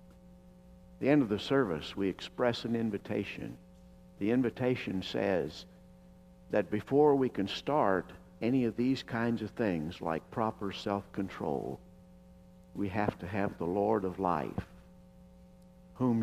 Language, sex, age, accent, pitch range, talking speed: English, male, 60-79, American, 85-110 Hz, 135 wpm